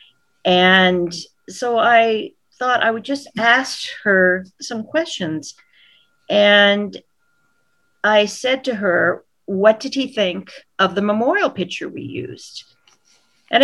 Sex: female